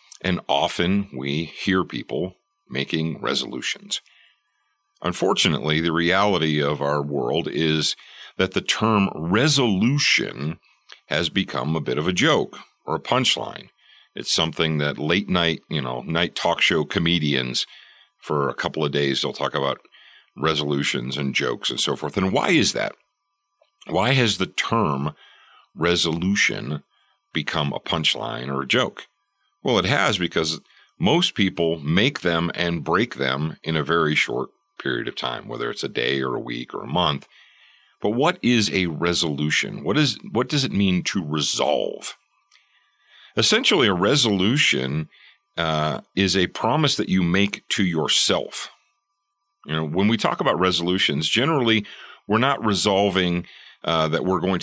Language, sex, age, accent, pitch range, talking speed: English, male, 50-69, American, 75-105 Hz, 150 wpm